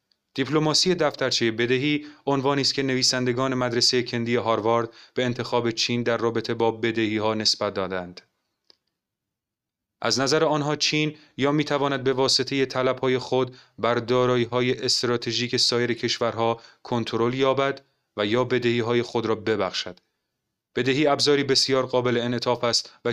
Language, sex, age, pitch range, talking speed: Persian, male, 30-49, 115-130 Hz, 135 wpm